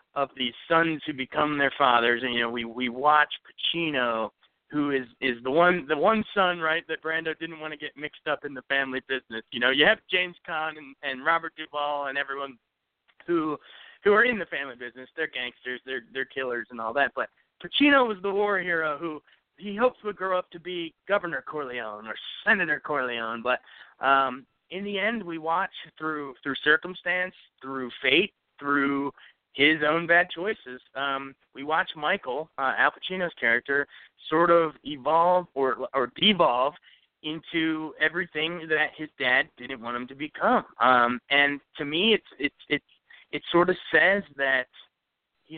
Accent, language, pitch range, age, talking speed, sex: American, English, 135-175 Hz, 30-49, 180 wpm, male